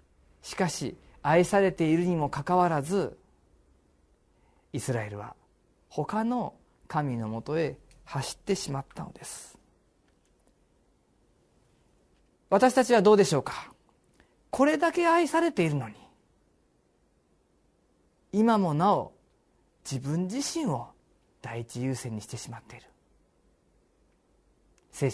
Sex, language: male, Japanese